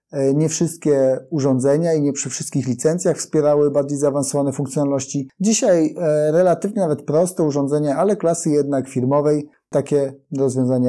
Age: 30-49